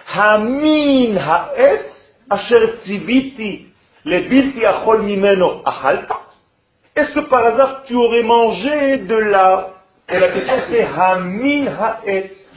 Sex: male